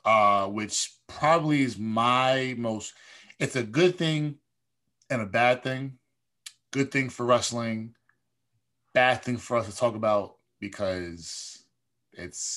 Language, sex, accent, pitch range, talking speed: English, male, American, 100-125 Hz, 130 wpm